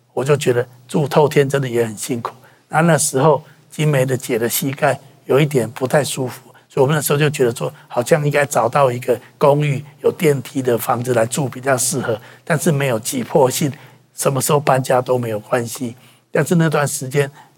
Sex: male